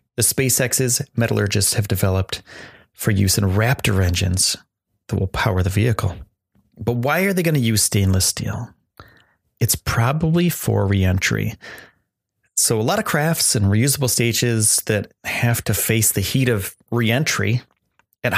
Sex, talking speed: male, 145 wpm